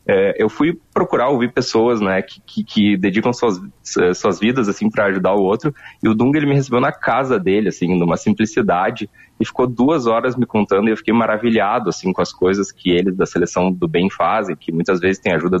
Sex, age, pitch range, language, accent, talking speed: male, 20-39, 110-145 Hz, Portuguese, Brazilian, 215 wpm